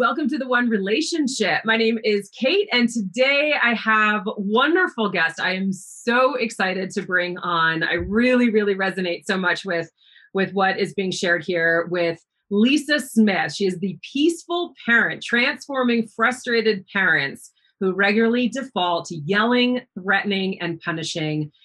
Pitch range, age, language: 165-230 Hz, 30-49, English